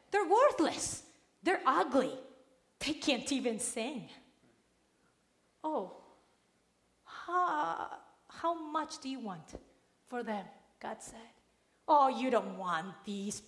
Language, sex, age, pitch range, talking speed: English, female, 30-49, 215-295 Hz, 105 wpm